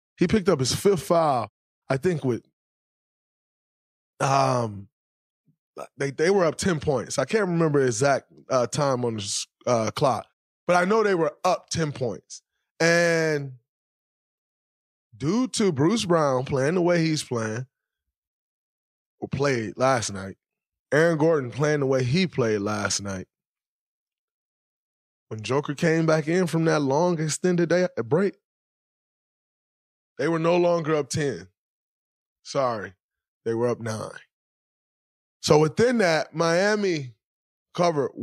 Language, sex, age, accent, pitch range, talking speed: English, male, 20-39, American, 110-155 Hz, 135 wpm